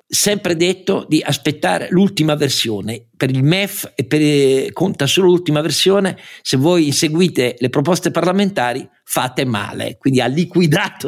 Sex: male